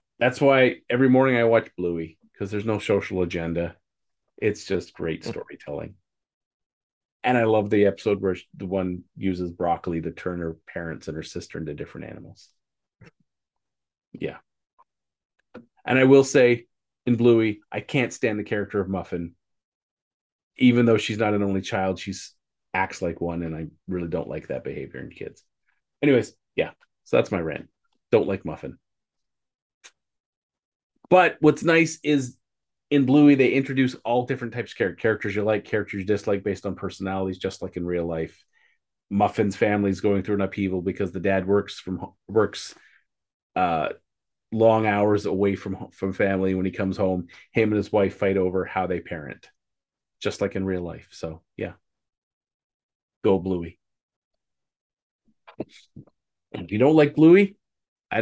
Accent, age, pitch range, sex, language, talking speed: American, 30-49, 90-115 Hz, male, English, 160 wpm